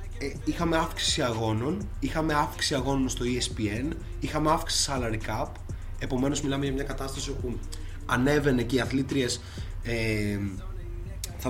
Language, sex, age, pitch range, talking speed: Greek, male, 20-39, 100-140 Hz, 130 wpm